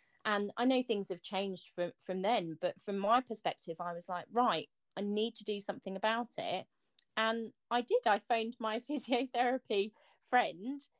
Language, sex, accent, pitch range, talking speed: English, female, British, 180-215 Hz, 175 wpm